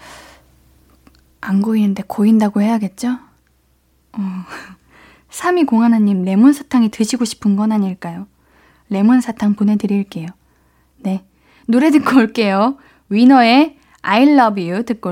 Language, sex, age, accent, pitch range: Korean, female, 20-39, native, 190-295 Hz